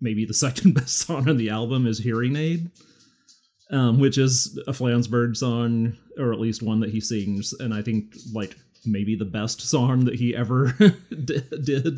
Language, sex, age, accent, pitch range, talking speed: English, male, 30-49, American, 105-135 Hz, 180 wpm